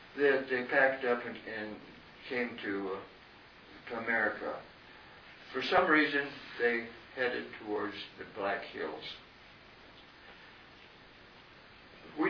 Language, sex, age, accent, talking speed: English, male, 60-79, American, 100 wpm